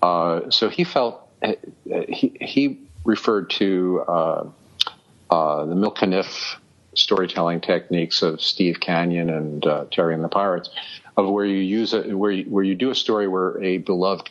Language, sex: English, male